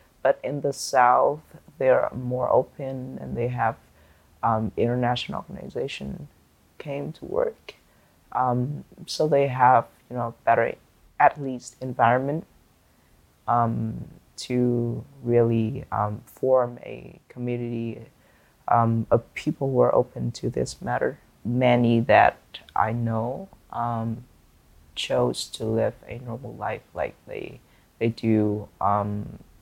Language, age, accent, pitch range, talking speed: English, 20-39, American, 110-125 Hz, 120 wpm